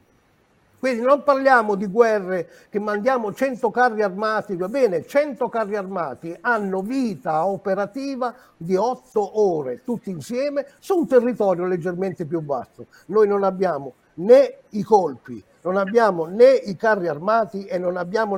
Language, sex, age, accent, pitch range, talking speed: Italian, male, 50-69, native, 185-235 Hz, 145 wpm